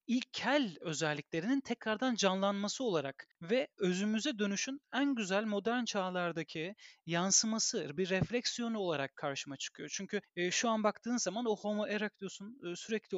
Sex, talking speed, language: male, 125 wpm, Turkish